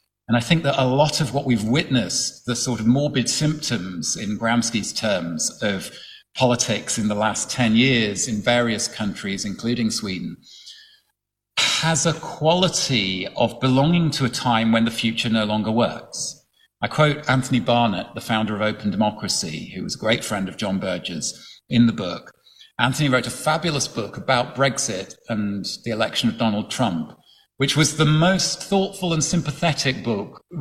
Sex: male